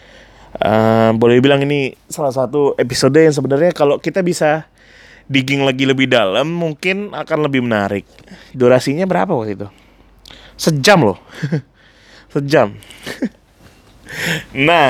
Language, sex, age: Indonesian, male, 20-39